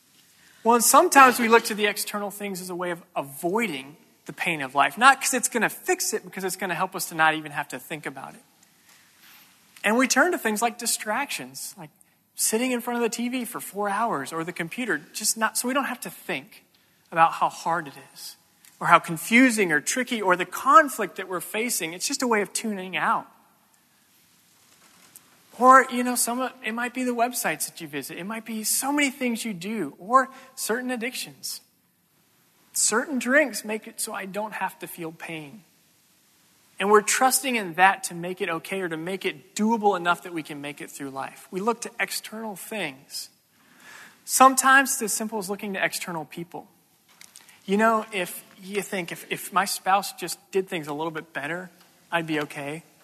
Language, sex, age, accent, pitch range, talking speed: English, male, 30-49, American, 175-235 Hz, 200 wpm